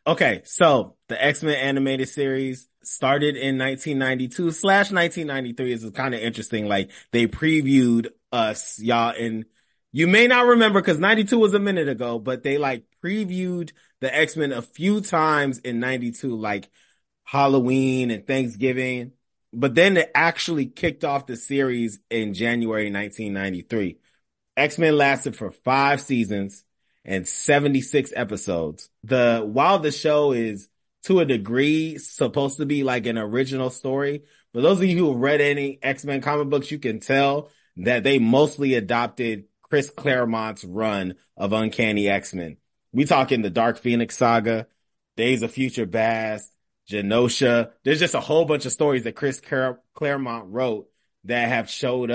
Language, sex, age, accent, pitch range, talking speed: English, male, 30-49, American, 115-145 Hz, 150 wpm